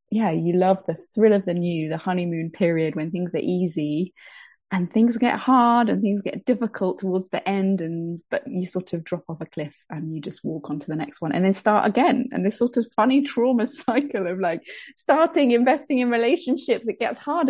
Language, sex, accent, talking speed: English, female, British, 215 wpm